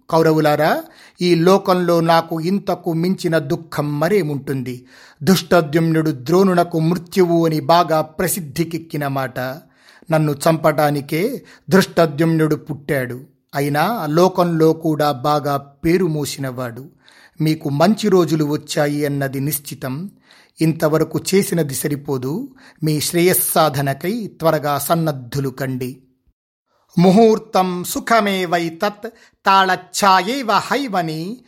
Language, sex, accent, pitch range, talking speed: Telugu, male, native, 150-195 Hz, 85 wpm